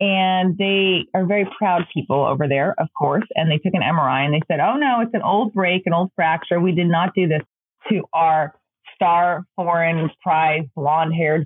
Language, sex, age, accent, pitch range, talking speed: English, female, 30-49, American, 160-195 Hz, 205 wpm